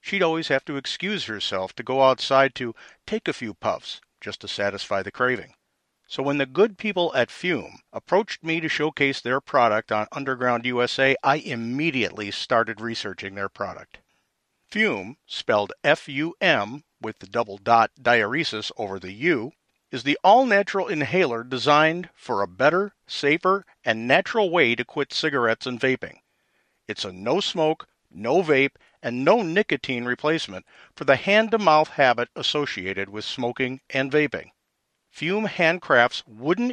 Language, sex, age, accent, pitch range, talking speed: English, male, 50-69, American, 115-165 Hz, 145 wpm